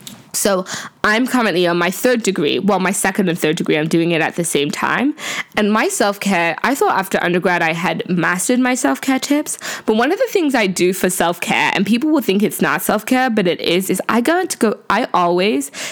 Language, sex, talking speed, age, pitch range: English, female, 210 wpm, 20-39, 180-240 Hz